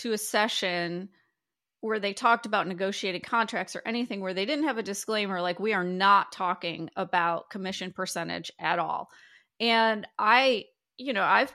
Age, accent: 30-49, American